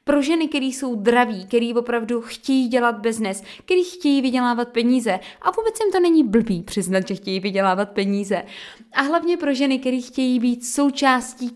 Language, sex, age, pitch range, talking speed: Czech, female, 20-39, 225-275 Hz, 170 wpm